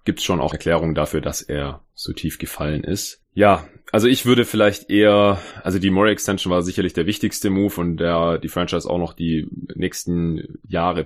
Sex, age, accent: male, 30-49, German